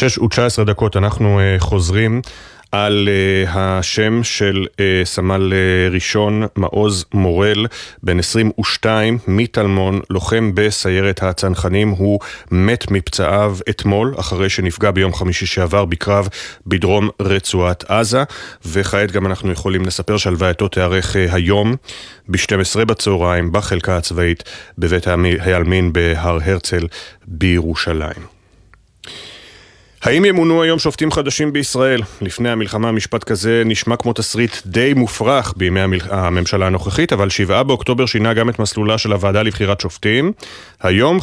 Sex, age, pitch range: male, 30-49, 95-115 Hz